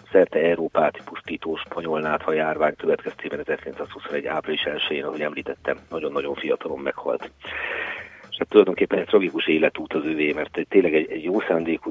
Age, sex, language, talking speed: 40-59, male, Hungarian, 140 wpm